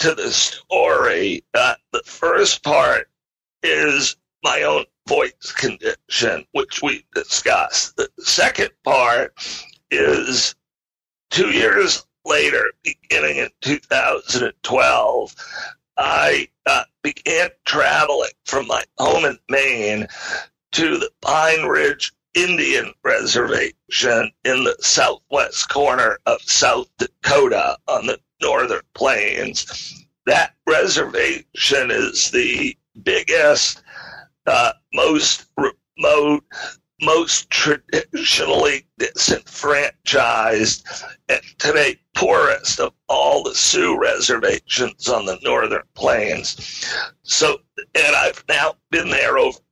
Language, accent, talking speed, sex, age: English, American, 100 wpm, male, 50-69